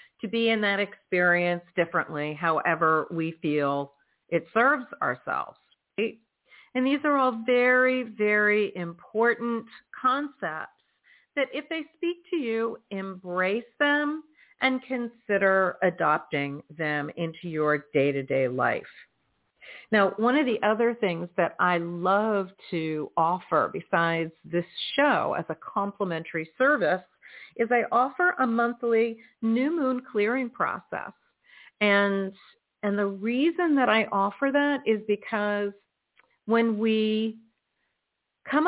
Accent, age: American, 50-69